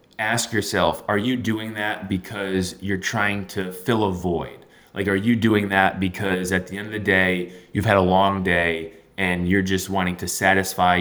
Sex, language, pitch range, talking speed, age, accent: male, English, 95-115 Hz, 195 wpm, 20-39, American